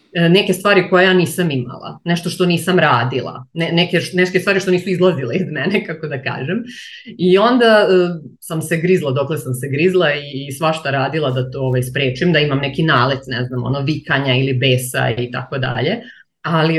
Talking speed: 195 wpm